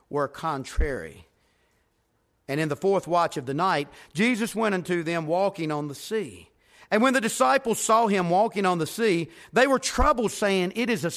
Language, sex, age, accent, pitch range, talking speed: English, male, 50-69, American, 135-205 Hz, 190 wpm